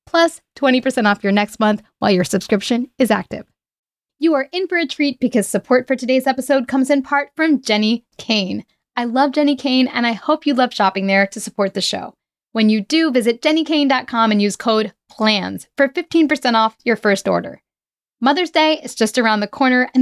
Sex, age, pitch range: female, 10-29, 215-290 Hz